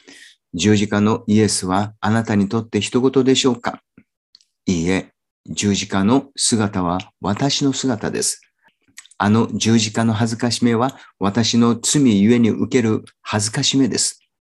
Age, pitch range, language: 50-69, 105-125 Hz, Japanese